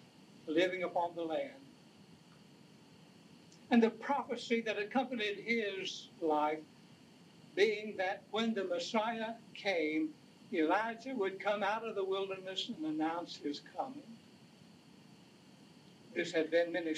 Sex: male